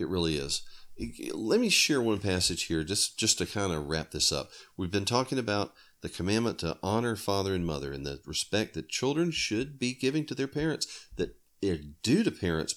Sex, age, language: male, 40-59, English